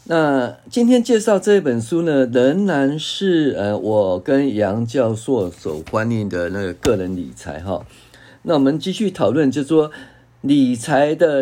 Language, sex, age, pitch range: Chinese, male, 50-69, 115-155 Hz